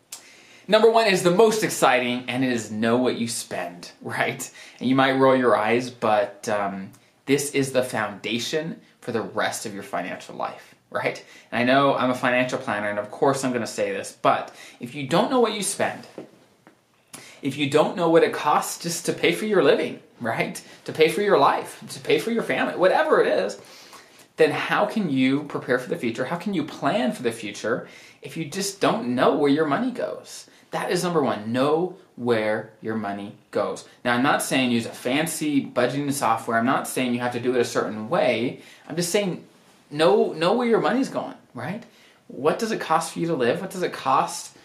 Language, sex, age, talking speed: English, male, 20-39, 215 wpm